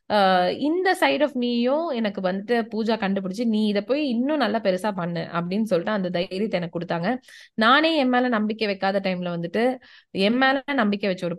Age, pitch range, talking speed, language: 20-39, 185-240 Hz, 170 wpm, Tamil